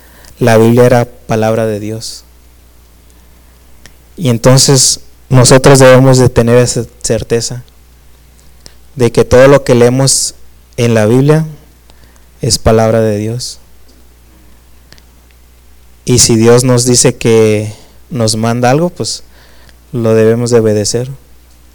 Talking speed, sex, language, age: 115 wpm, male, Spanish, 20-39